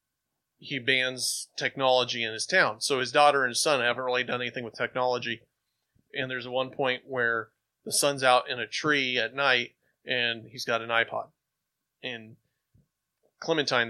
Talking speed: 165 wpm